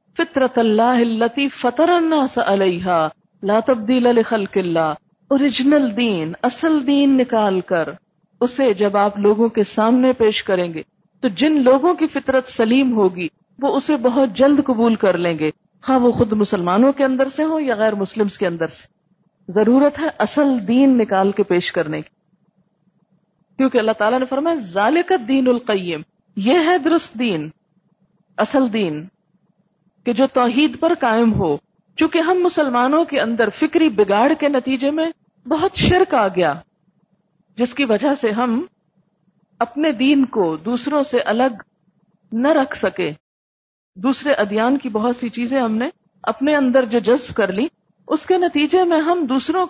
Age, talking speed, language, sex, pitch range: 50-69, 145 wpm, Urdu, female, 190-275 Hz